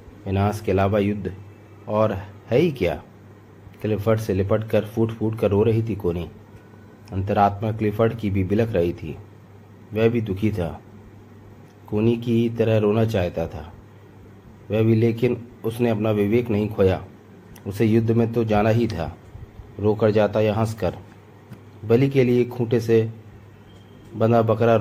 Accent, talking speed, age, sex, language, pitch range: native, 150 wpm, 30-49, male, Hindi, 100-115 Hz